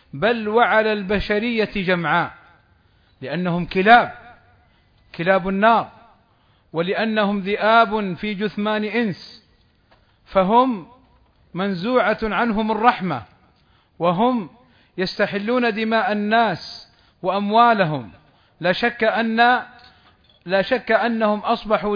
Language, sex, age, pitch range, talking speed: Arabic, male, 40-59, 180-235 Hz, 80 wpm